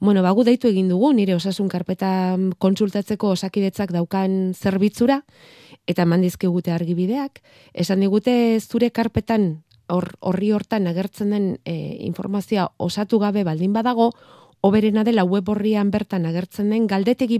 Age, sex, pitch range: 30-49, female, 175-225 Hz